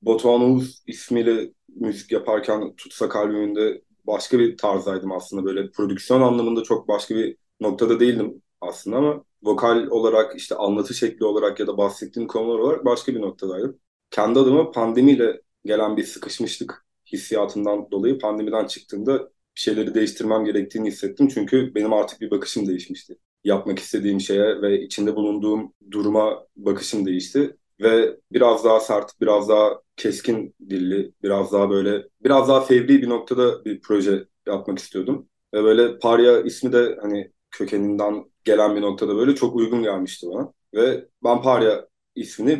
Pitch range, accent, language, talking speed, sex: 100-125 Hz, native, Turkish, 145 wpm, male